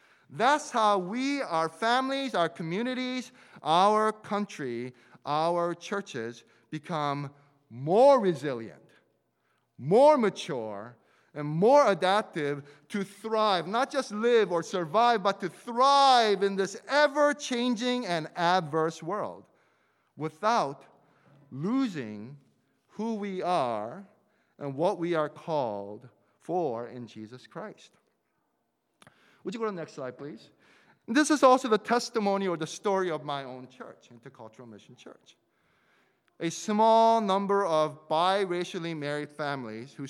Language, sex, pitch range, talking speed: English, male, 155-225 Hz, 120 wpm